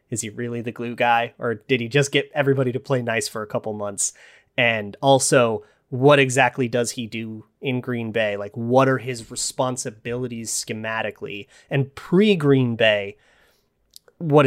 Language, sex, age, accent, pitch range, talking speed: English, male, 30-49, American, 120-155 Hz, 160 wpm